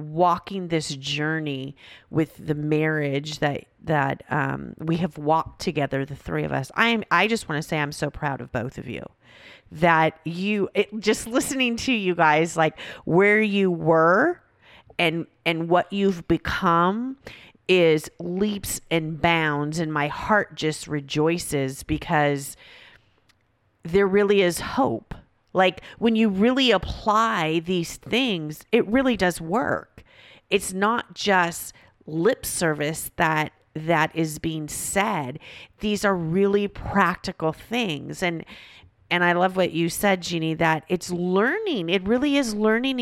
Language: English